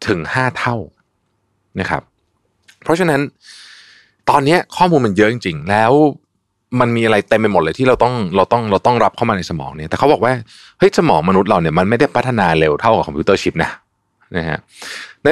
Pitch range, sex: 95-125 Hz, male